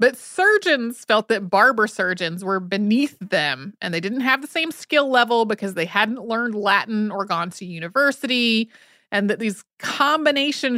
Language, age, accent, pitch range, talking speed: English, 30-49, American, 200-265 Hz, 165 wpm